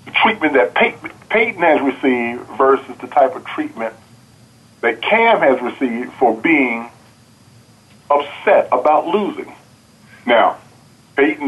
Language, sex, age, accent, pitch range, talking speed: English, male, 40-59, American, 115-145 Hz, 120 wpm